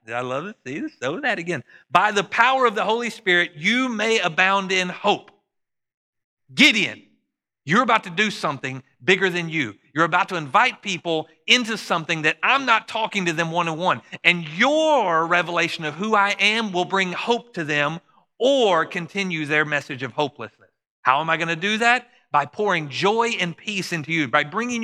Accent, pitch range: American, 155-210 Hz